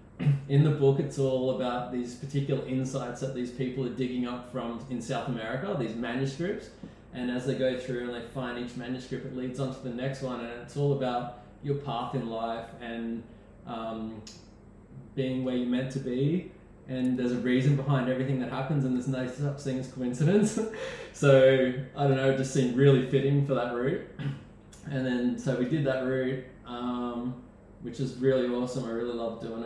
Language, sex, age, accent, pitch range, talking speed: English, male, 20-39, Australian, 115-135 Hz, 195 wpm